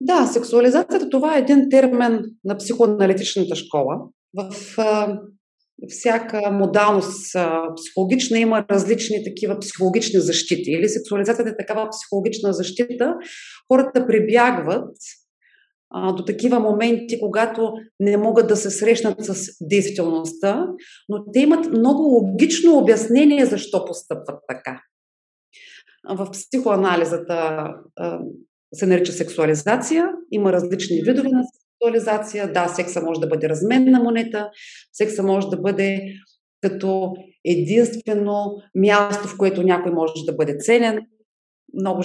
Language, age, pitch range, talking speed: Bulgarian, 40-59, 180-230 Hz, 115 wpm